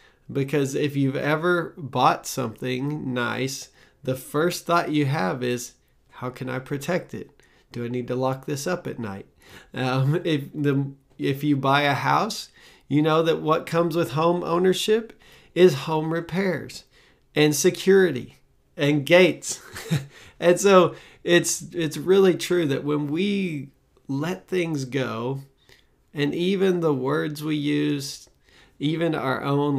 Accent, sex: American, male